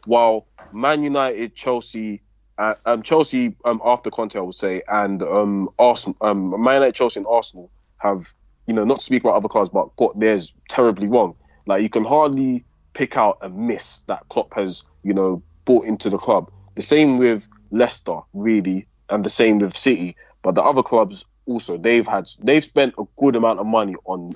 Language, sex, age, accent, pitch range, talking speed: English, male, 20-39, British, 95-115 Hz, 190 wpm